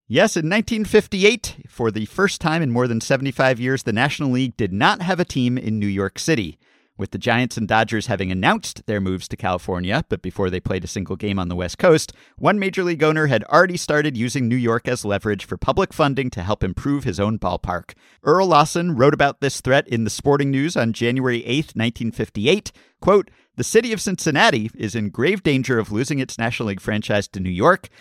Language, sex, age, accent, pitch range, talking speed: English, male, 50-69, American, 105-160 Hz, 210 wpm